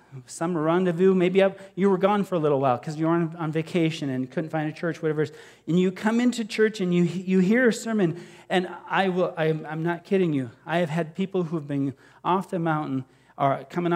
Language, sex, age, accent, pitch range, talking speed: English, male, 40-59, American, 135-185 Hz, 235 wpm